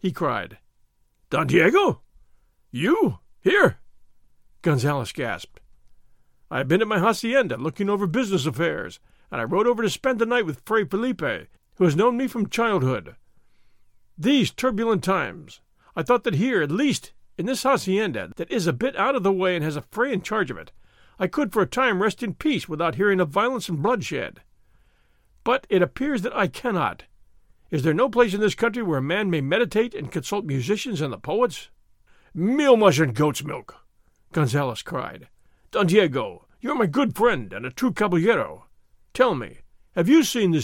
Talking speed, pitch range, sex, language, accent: 185 wpm, 160-240 Hz, male, English, American